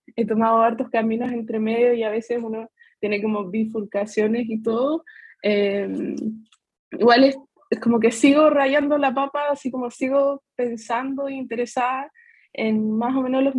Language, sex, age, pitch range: Spanish, female, 20-39, 215-255 Hz